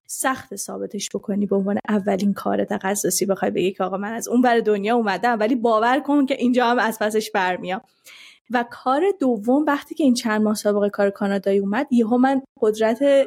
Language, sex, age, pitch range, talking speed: Persian, female, 20-39, 210-265 Hz, 190 wpm